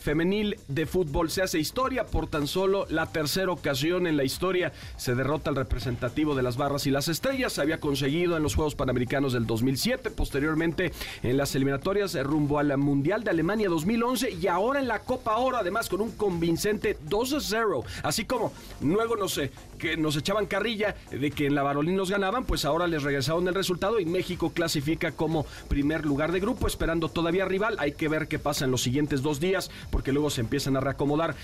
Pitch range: 145-205 Hz